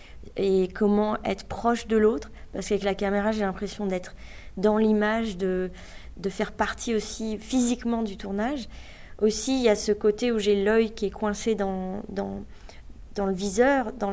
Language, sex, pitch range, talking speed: French, female, 195-220 Hz, 175 wpm